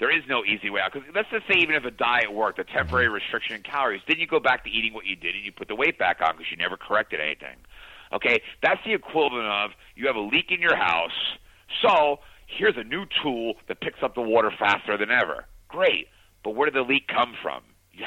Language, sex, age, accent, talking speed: English, male, 50-69, American, 250 wpm